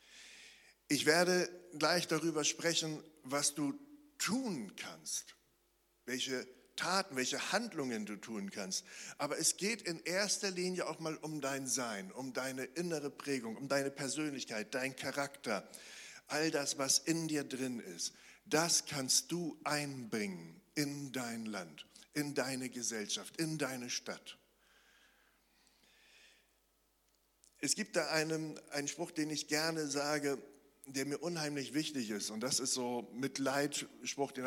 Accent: German